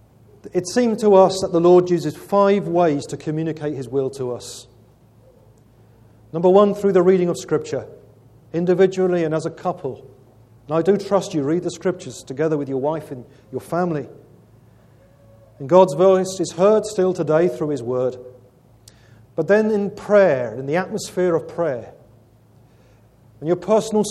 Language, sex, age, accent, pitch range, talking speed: English, male, 40-59, British, 125-195 Hz, 160 wpm